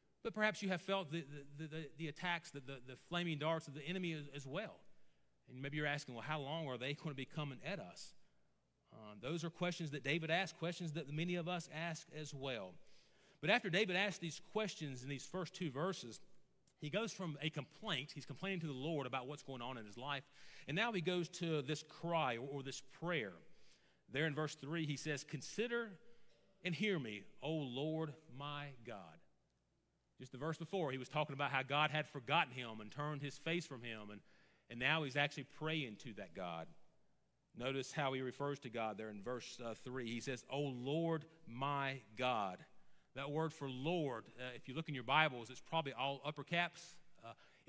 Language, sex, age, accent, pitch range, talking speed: English, male, 40-59, American, 130-165 Hz, 205 wpm